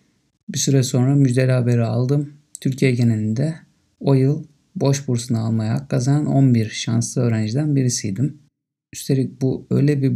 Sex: male